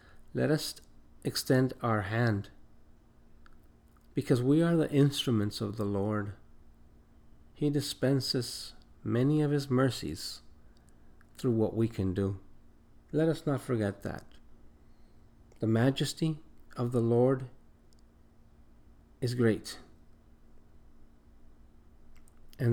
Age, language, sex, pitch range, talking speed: 50-69, Spanish, male, 90-120 Hz, 100 wpm